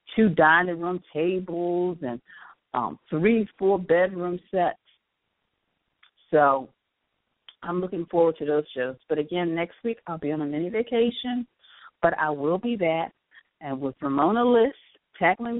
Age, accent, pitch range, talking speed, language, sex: 40-59, American, 140-180 Hz, 140 wpm, English, female